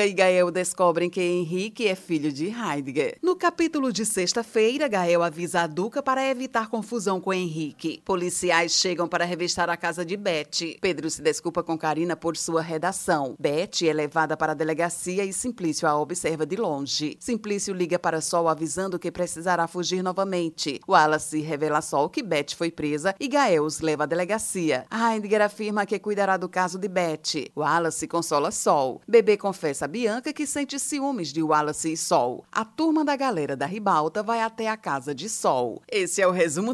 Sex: female